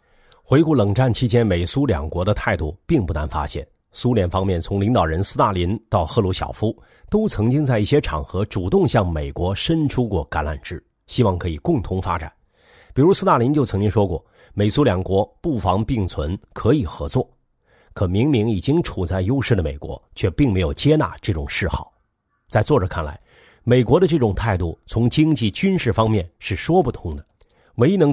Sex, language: male, Chinese